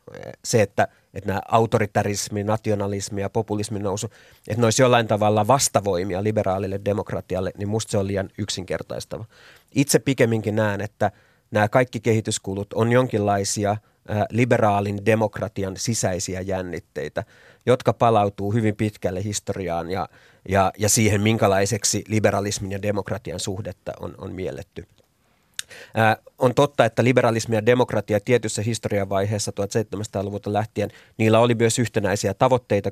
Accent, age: native, 30-49